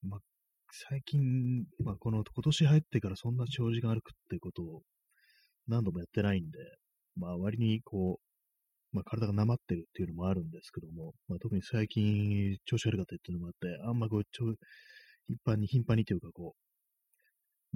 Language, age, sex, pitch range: Japanese, 30-49, male, 95-130 Hz